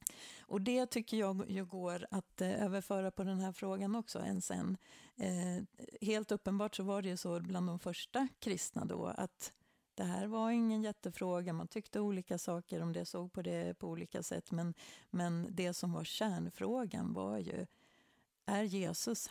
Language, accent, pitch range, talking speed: Swedish, native, 175-215 Hz, 175 wpm